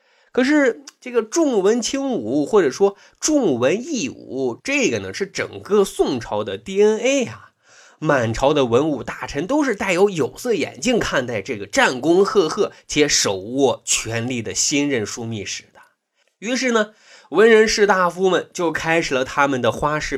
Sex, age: male, 20-39